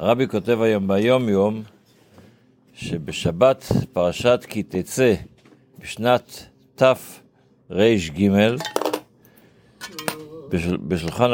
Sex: male